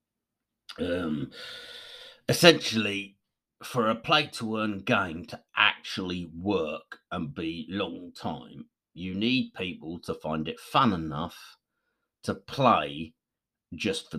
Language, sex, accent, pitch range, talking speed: English, male, British, 80-115 Hz, 115 wpm